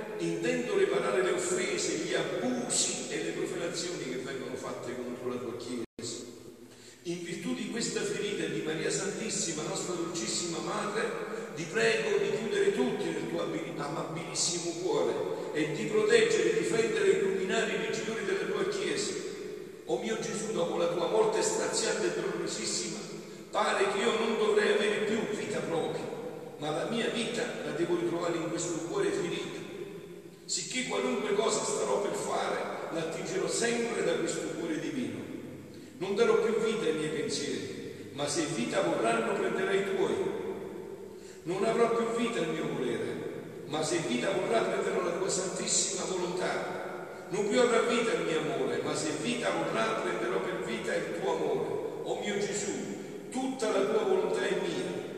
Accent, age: native, 50-69